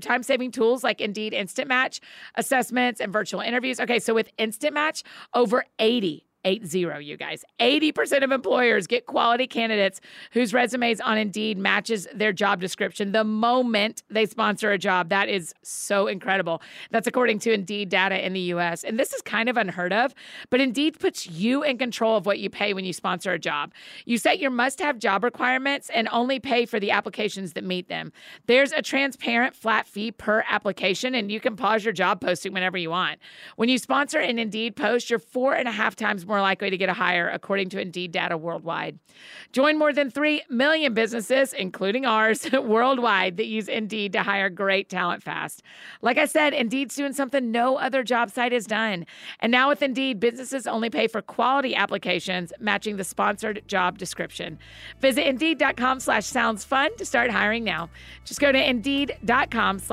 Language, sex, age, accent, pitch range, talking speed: English, female, 40-59, American, 200-260 Hz, 190 wpm